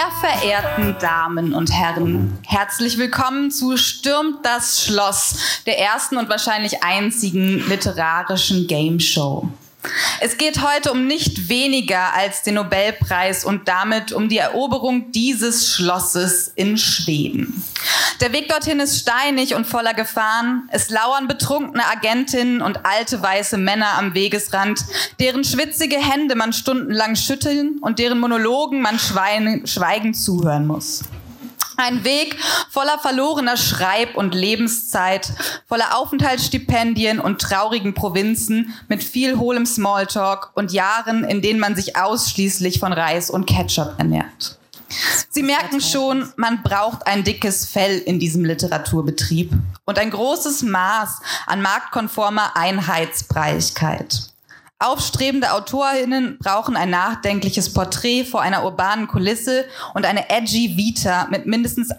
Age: 20-39